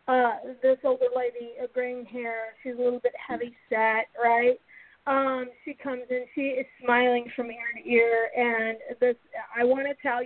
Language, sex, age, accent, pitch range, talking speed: English, female, 40-59, American, 240-285 Hz, 180 wpm